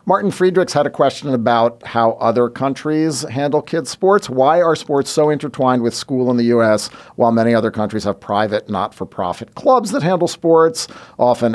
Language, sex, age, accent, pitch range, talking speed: English, male, 40-59, American, 105-130 Hz, 175 wpm